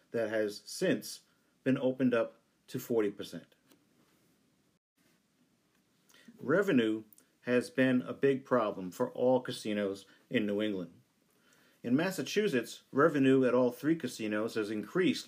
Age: 50-69